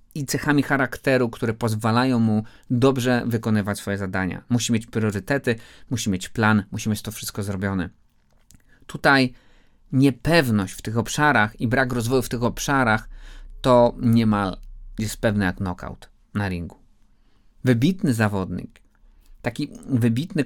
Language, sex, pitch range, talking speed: Polish, male, 105-130 Hz, 130 wpm